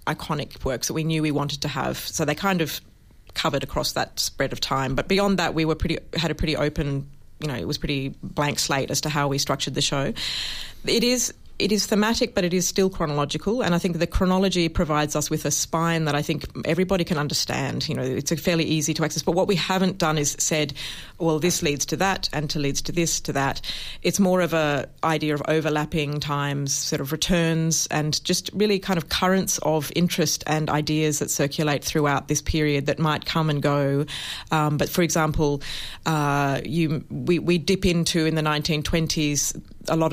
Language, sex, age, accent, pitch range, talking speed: English, female, 30-49, Australian, 145-170 Hz, 210 wpm